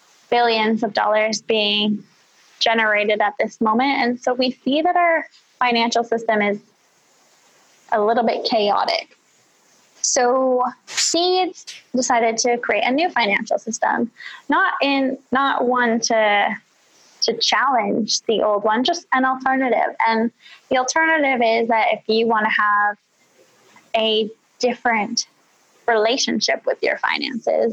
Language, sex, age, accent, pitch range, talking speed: English, female, 10-29, American, 220-250 Hz, 130 wpm